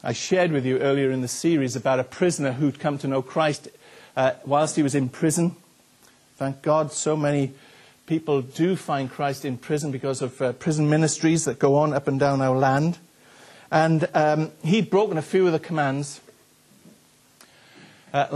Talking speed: 180 wpm